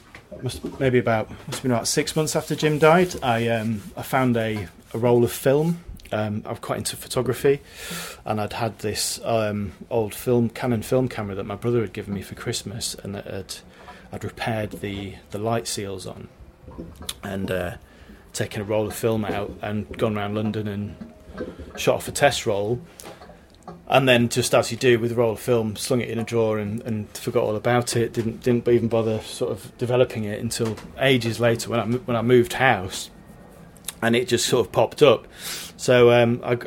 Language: English